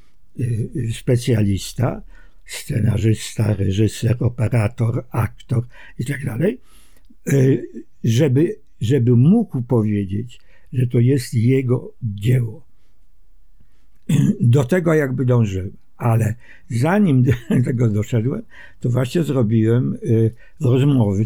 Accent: native